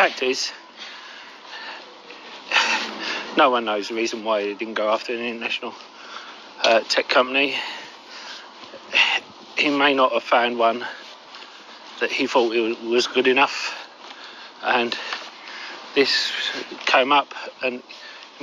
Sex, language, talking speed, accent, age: male, English, 120 wpm, British, 40-59